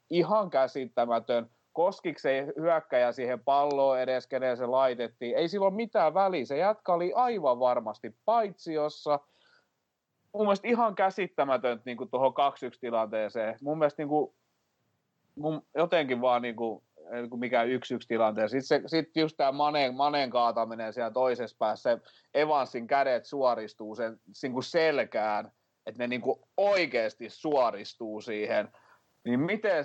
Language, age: Finnish, 30-49